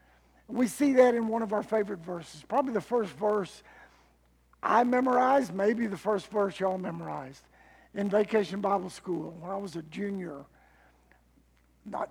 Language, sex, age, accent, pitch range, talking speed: English, male, 50-69, American, 145-230 Hz, 155 wpm